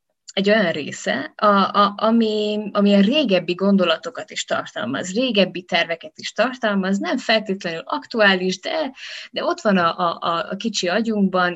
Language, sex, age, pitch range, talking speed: Hungarian, female, 20-39, 165-195 Hz, 145 wpm